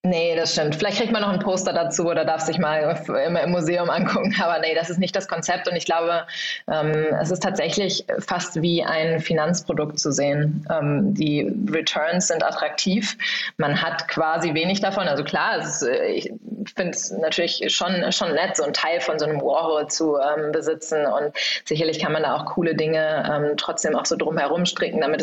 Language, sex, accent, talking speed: German, female, German, 200 wpm